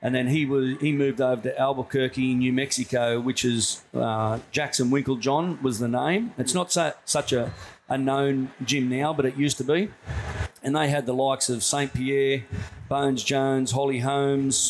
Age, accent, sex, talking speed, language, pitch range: 40-59, Australian, male, 180 wpm, English, 125-140 Hz